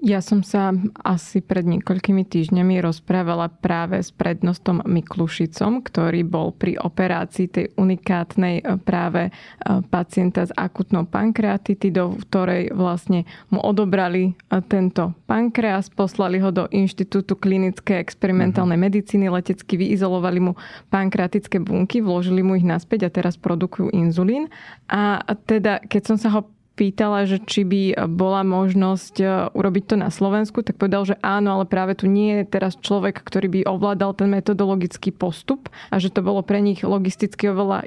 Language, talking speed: Slovak, 145 wpm